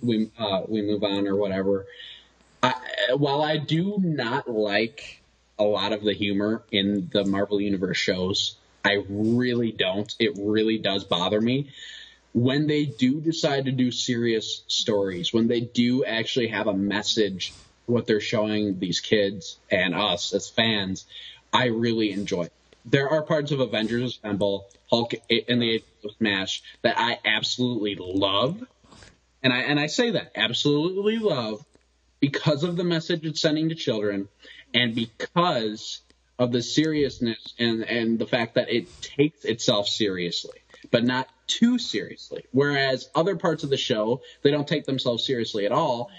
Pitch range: 105-140 Hz